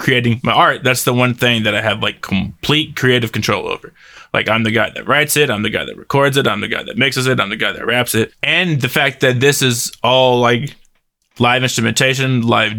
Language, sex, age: English, male, 20-39